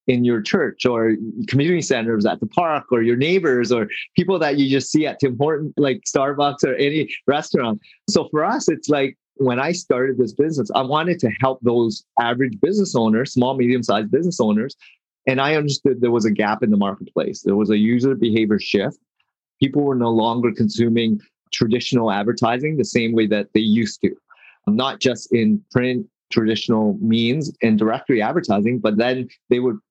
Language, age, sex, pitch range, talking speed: English, 30-49, male, 110-135 Hz, 185 wpm